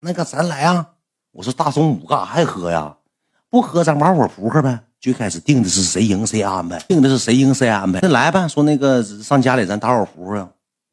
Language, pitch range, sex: Chinese, 95-140 Hz, male